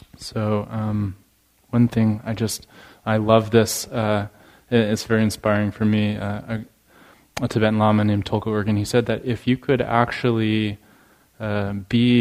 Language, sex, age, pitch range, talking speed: English, male, 20-39, 105-115 Hz, 150 wpm